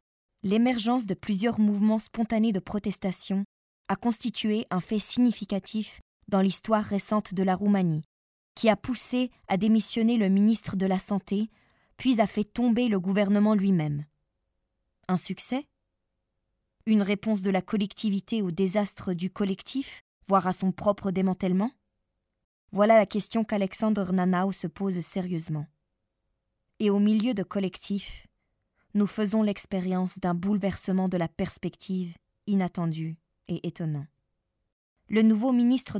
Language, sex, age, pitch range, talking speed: French, female, 20-39, 180-210 Hz, 130 wpm